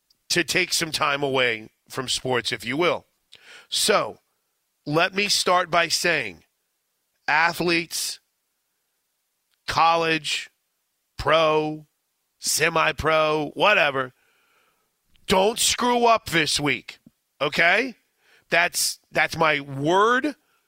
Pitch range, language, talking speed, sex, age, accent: 140-185 Hz, English, 90 wpm, male, 40-59, American